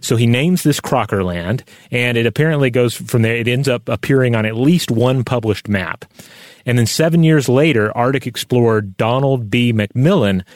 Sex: male